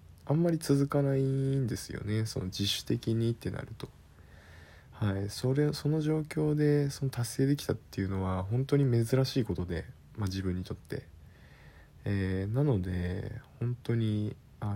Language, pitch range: Japanese, 95-120 Hz